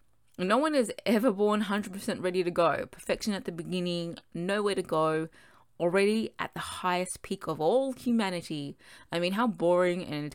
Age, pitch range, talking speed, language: 20-39, 150-200 Hz, 170 wpm, English